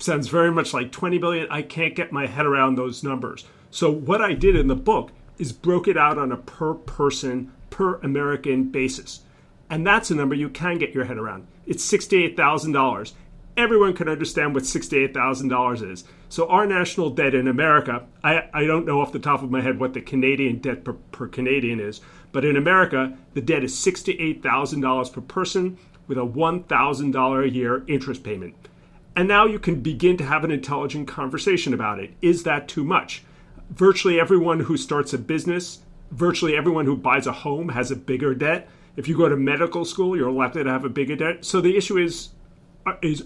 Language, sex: English, male